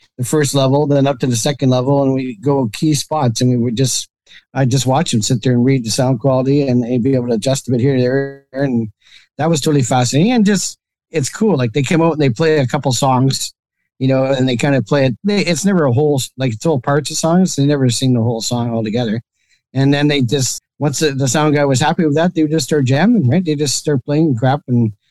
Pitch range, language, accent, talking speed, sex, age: 125-150 Hz, English, American, 265 wpm, male, 50-69